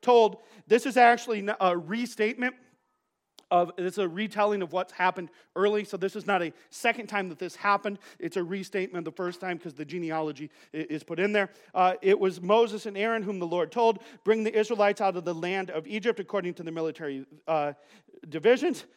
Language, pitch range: English, 155-210 Hz